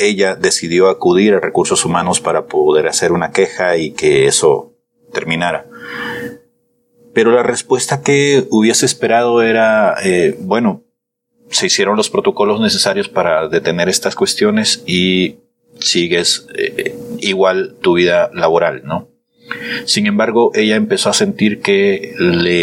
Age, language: 40-59, Spanish